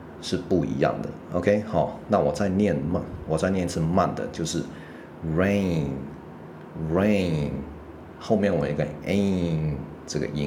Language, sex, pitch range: Chinese, male, 80-95 Hz